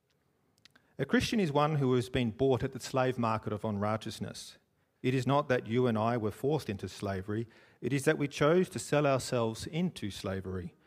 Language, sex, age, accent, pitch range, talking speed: English, male, 40-59, Australian, 110-145 Hz, 195 wpm